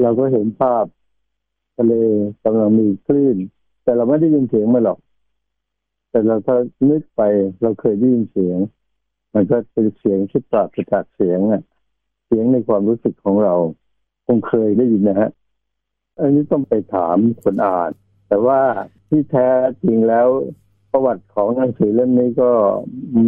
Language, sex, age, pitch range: Thai, male, 60-79, 100-125 Hz